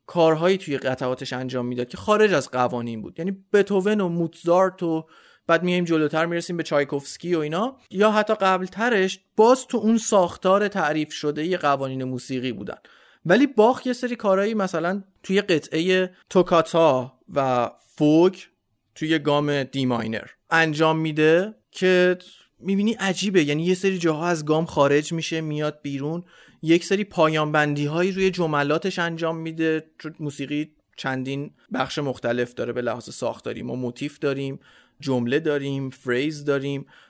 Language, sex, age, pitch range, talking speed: Persian, male, 30-49, 145-190 Hz, 145 wpm